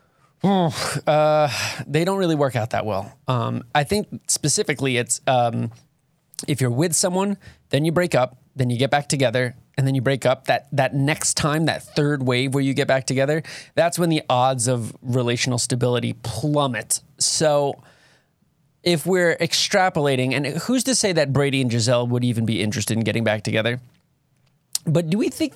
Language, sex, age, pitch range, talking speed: English, male, 20-39, 125-155 Hz, 180 wpm